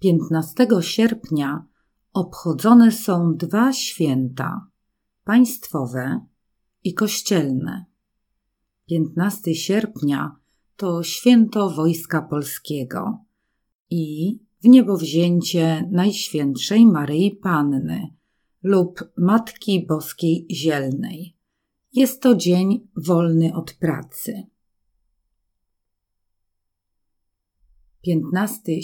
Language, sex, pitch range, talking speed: Polish, female, 155-200 Hz, 65 wpm